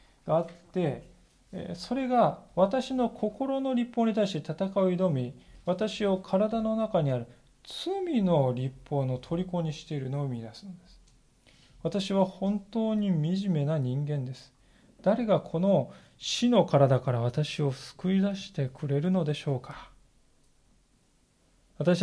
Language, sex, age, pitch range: Japanese, male, 20-39, 140-205 Hz